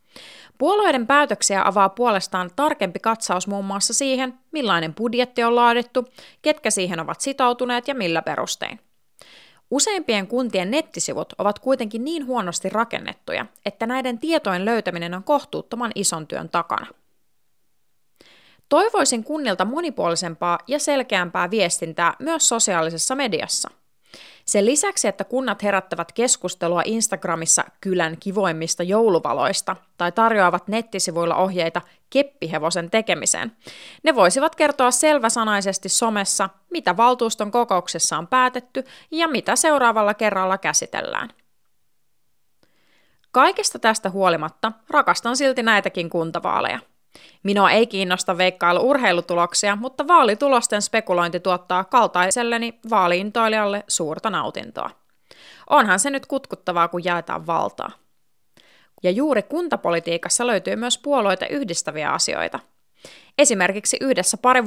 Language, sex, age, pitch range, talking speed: Finnish, female, 30-49, 180-250 Hz, 105 wpm